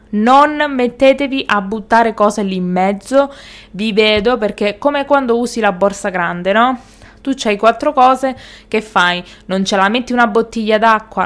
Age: 20-39